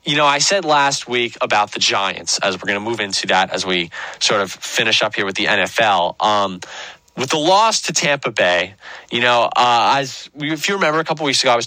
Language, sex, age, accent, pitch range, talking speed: English, male, 20-39, American, 105-135 Hz, 230 wpm